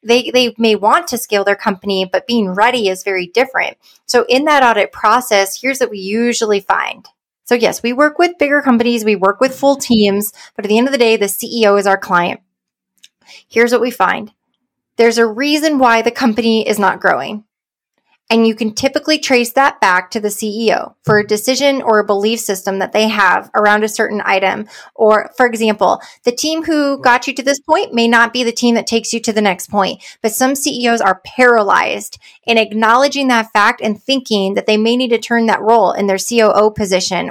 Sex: female